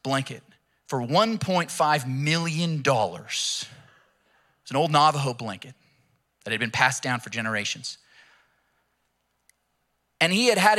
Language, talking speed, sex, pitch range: English, 110 wpm, male, 130-190 Hz